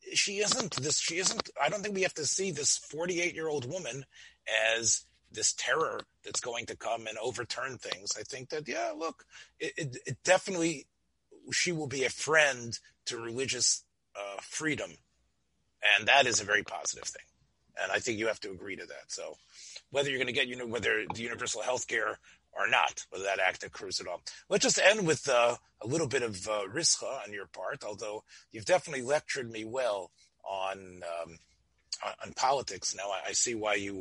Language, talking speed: English, 195 wpm